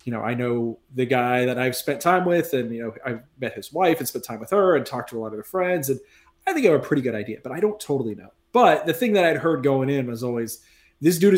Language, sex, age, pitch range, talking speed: English, male, 20-39, 125-155 Hz, 300 wpm